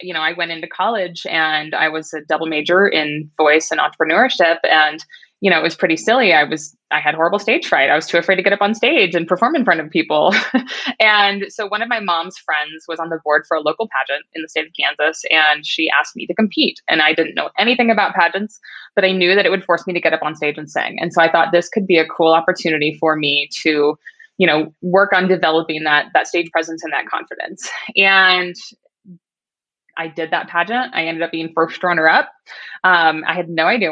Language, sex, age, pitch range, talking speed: English, female, 20-39, 160-190 Hz, 240 wpm